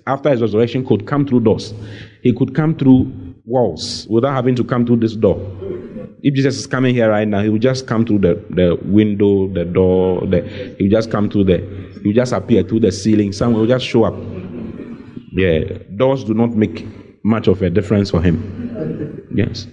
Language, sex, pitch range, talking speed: English, male, 105-135 Hz, 200 wpm